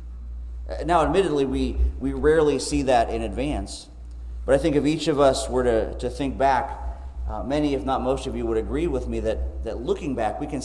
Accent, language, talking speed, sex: American, English, 215 wpm, male